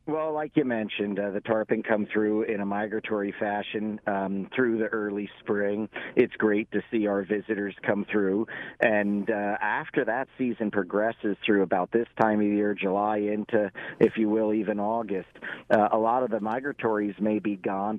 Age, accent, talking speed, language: 40-59, American, 180 wpm, English